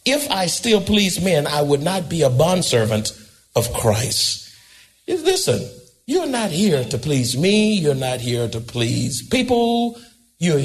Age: 60-79